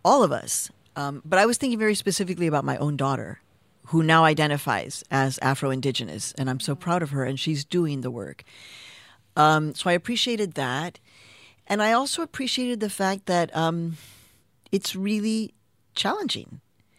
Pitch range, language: 135-190 Hz, English